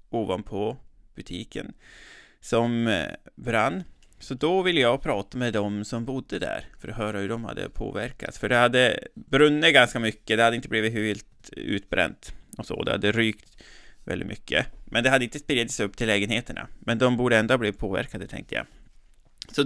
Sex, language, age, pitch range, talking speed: male, Swedish, 20-39, 105-130 Hz, 175 wpm